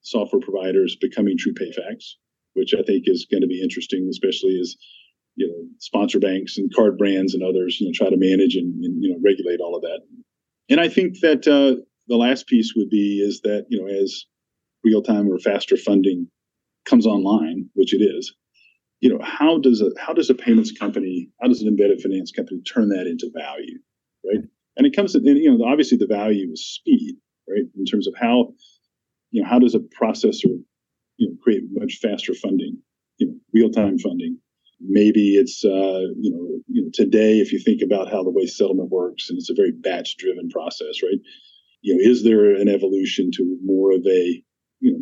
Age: 40-59